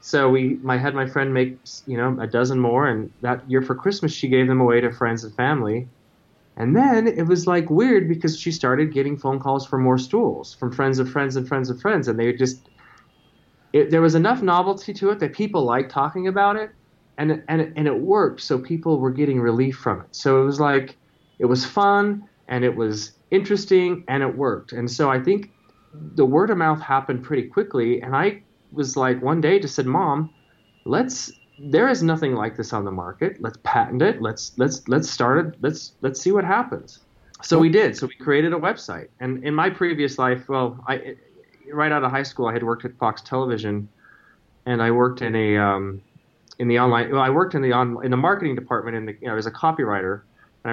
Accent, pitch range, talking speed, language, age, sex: American, 120-155 Hz, 215 wpm, English, 20-39, male